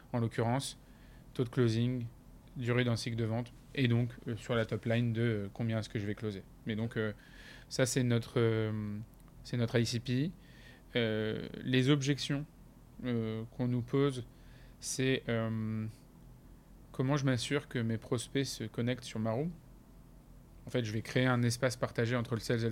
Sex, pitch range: male, 115-135 Hz